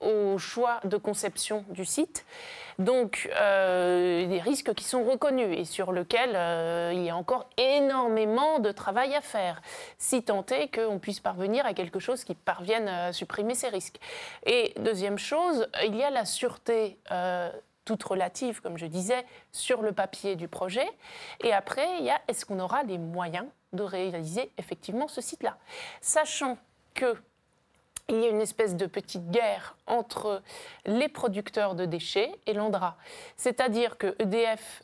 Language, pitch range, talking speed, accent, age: French, 190-255 Hz, 165 wpm, French, 30-49